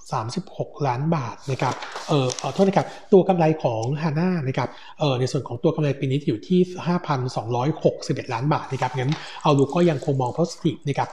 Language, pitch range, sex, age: Thai, 130-165 Hz, male, 60-79